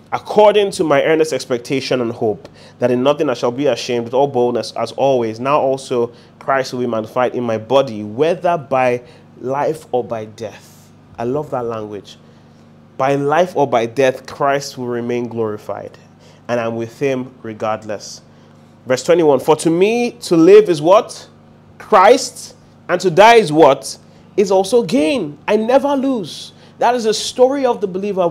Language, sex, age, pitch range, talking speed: English, male, 30-49, 120-195 Hz, 170 wpm